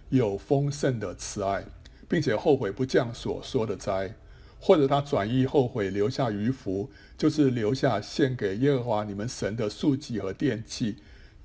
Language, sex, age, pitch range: Chinese, male, 60-79, 100-145 Hz